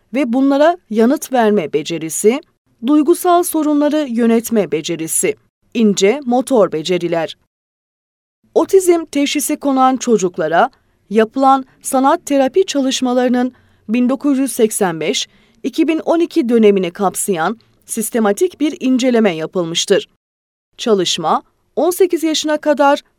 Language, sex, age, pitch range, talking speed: Turkish, female, 30-49, 200-295 Hz, 80 wpm